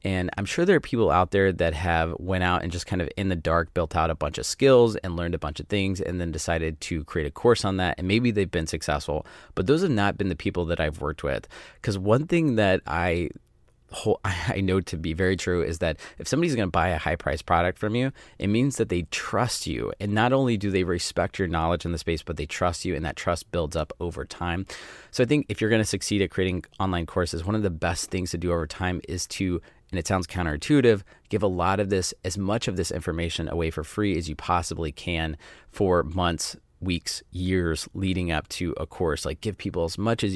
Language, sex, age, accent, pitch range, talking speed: English, male, 30-49, American, 85-100 Hz, 250 wpm